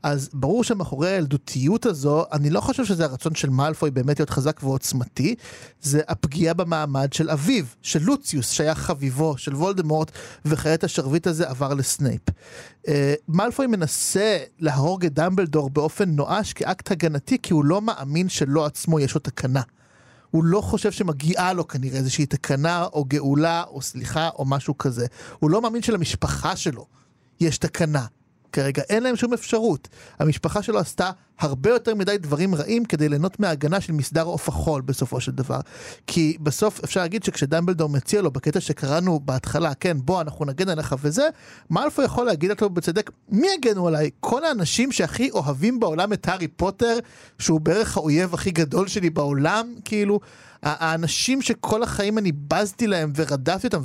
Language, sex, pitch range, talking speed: Hebrew, male, 145-195 Hz, 160 wpm